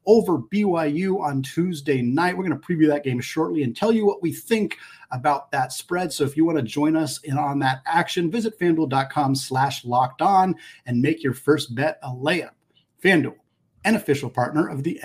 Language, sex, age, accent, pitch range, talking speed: English, male, 40-59, American, 140-175 Hz, 195 wpm